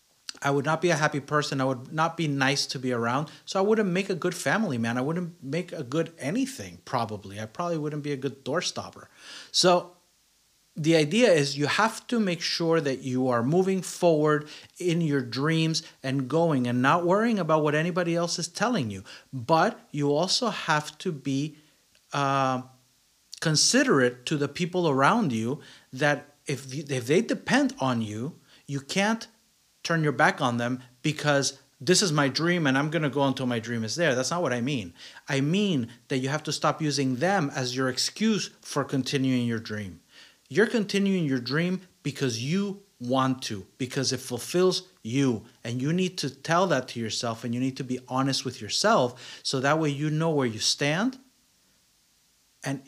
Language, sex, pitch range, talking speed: English, male, 130-170 Hz, 190 wpm